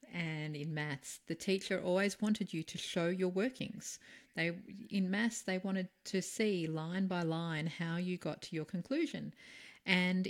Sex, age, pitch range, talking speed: female, 40-59, 155-210 Hz, 170 wpm